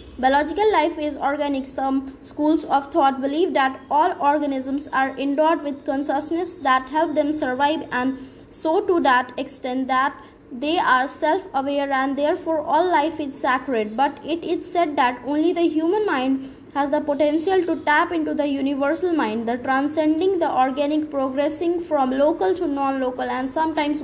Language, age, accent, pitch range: English, 20-39, Indian, 275-330 Hz